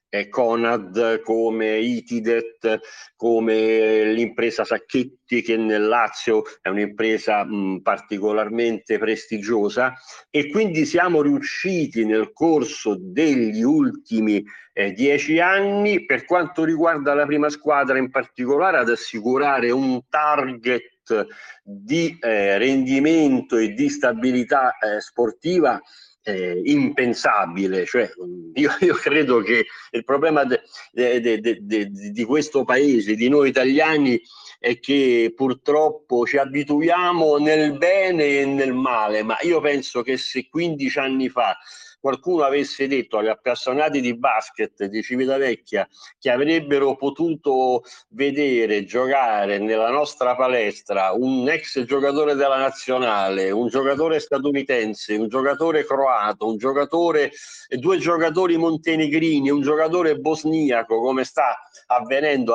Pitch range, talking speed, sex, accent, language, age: 115-155 Hz, 110 wpm, male, native, Italian, 50-69